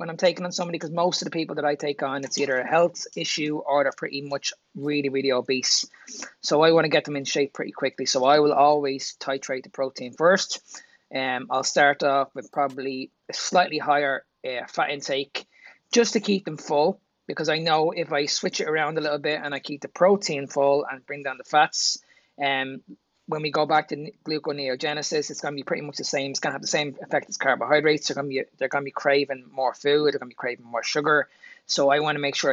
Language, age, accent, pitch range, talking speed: English, 20-39, Irish, 135-155 Hz, 240 wpm